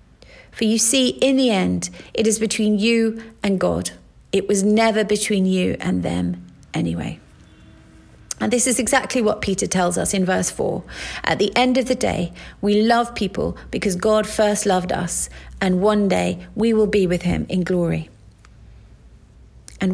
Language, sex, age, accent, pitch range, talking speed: English, female, 40-59, British, 175-220 Hz, 170 wpm